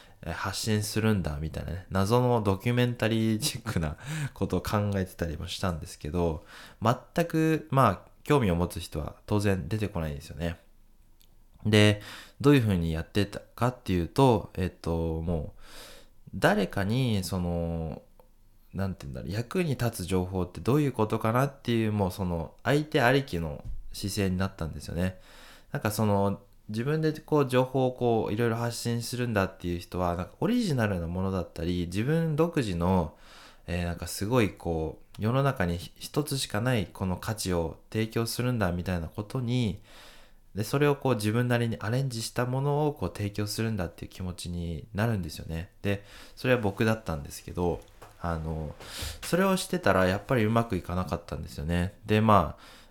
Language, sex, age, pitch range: English, male, 20-39, 90-120 Hz